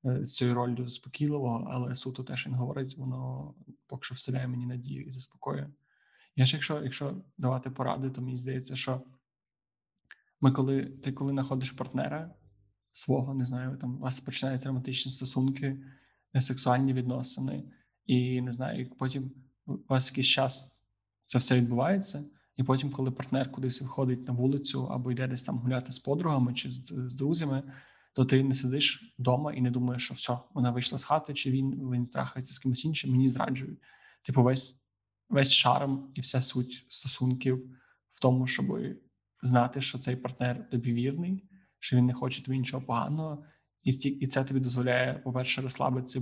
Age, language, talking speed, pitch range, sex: 20-39, Ukrainian, 165 wpm, 125-135 Hz, male